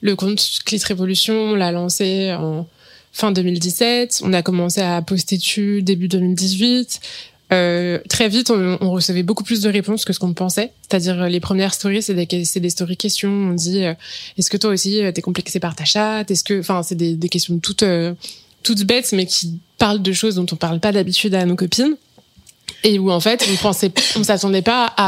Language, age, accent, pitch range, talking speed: French, 20-39, French, 180-215 Hz, 215 wpm